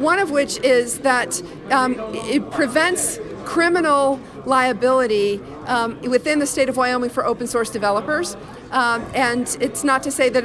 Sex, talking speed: female, 155 wpm